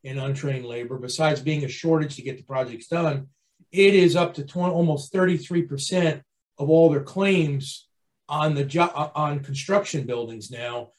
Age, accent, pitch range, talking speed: 40-59, American, 130-165 Hz, 170 wpm